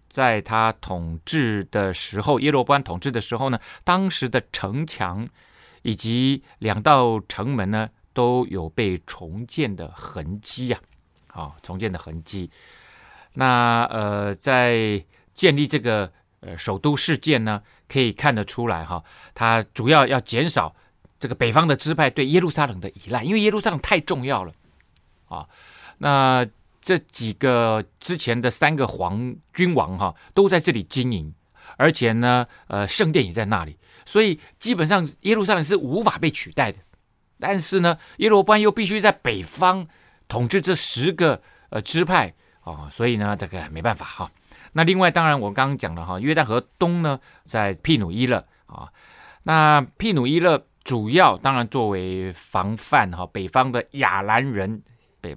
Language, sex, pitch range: Chinese, male, 100-150 Hz